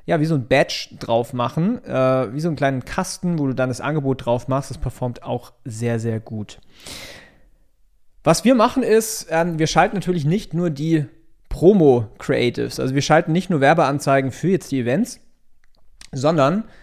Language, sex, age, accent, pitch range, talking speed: German, male, 30-49, German, 125-155 Hz, 175 wpm